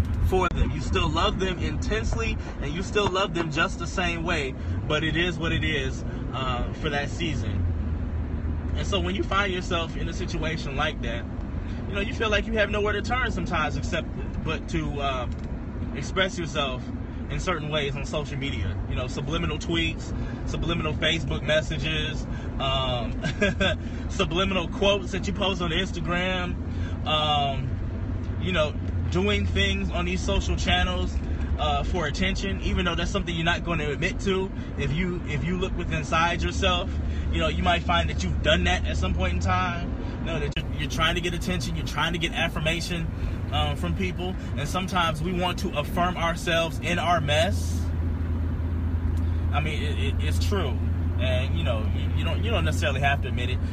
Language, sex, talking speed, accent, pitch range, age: English, male, 185 wpm, American, 85-95 Hz, 20-39